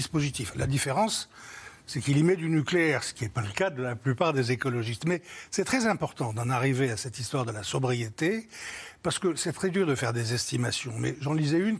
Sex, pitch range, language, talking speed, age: male, 130-190 Hz, French, 225 wpm, 60-79